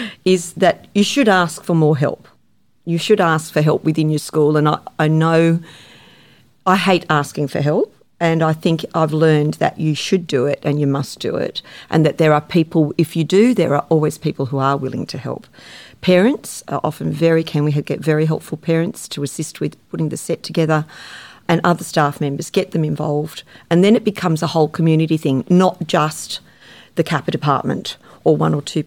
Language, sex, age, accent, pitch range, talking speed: English, female, 50-69, Australian, 150-170 Hz, 205 wpm